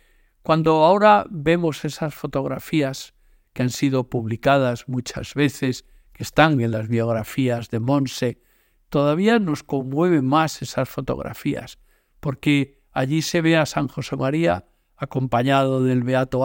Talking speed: 130 wpm